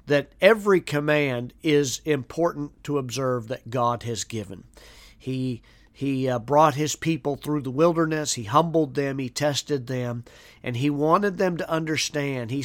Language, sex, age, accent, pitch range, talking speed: English, male, 40-59, American, 125-160 Hz, 155 wpm